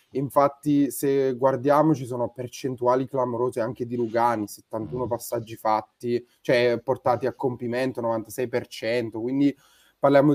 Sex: male